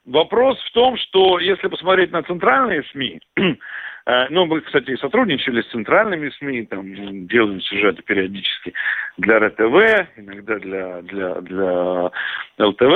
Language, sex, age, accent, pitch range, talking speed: Russian, male, 50-69, native, 130-205 Hz, 135 wpm